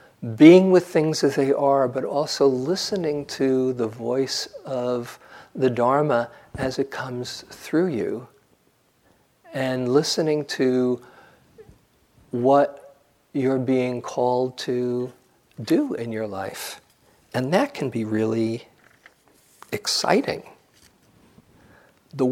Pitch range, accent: 115-135 Hz, American